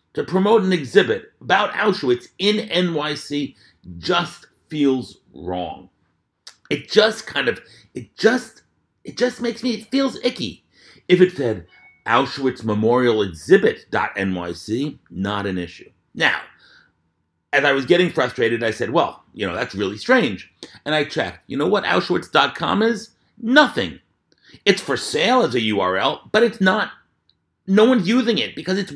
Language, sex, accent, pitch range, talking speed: English, male, American, 140-230 Hz, 145 wpm